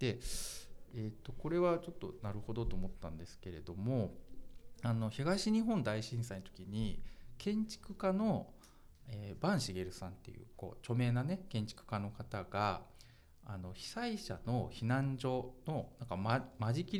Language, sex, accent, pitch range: Japanese, male, native, 100-140 Hz